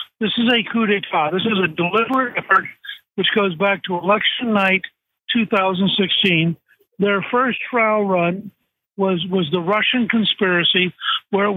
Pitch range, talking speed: 180-220 Hz, 145 wpm